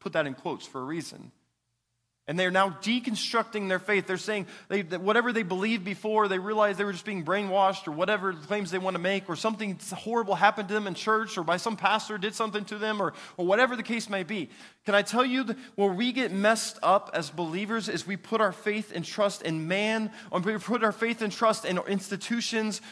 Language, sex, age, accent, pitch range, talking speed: English, male, 20-39, American, 200-280 Hz, 235 wpm